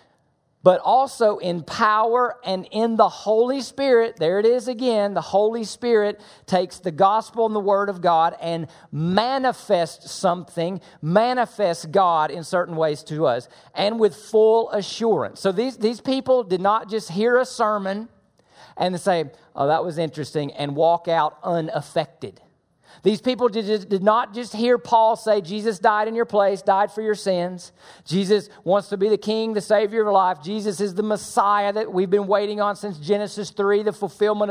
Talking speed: 170 wpm